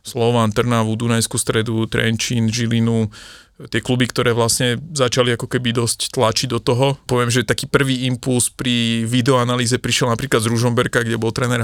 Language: Slovak